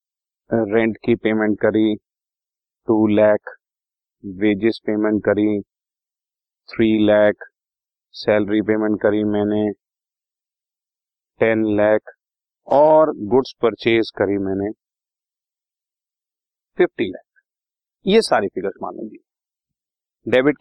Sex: male